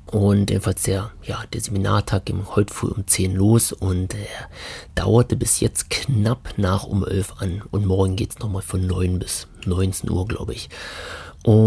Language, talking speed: German, 180 wpm